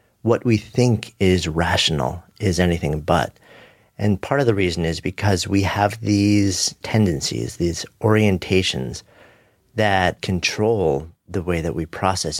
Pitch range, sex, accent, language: 80-100 Hz, male, American, English